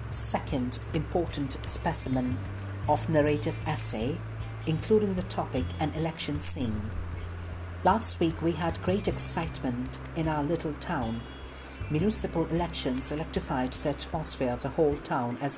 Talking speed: 125 wpm